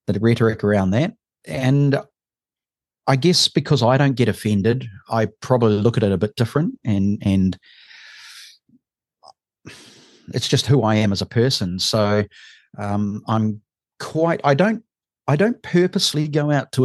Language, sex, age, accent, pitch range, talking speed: English, male, 40-59, Australian, 110-140 Hz, 150 wpm